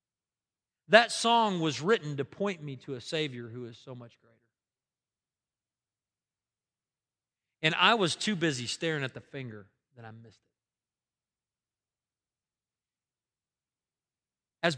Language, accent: English, American